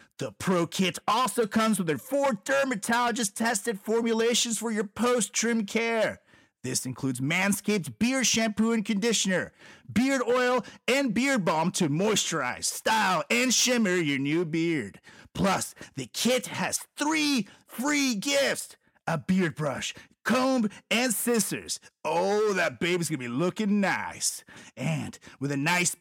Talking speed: 135 wpm